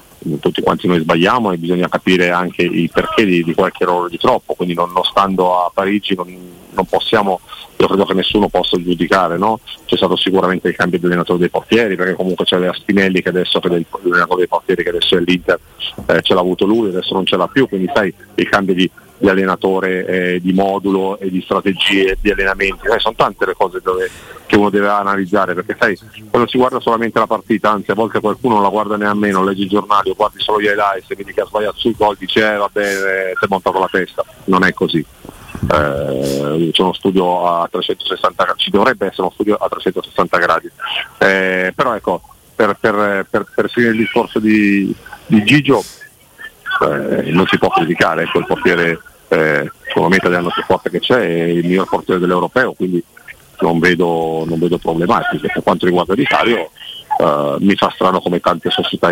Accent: native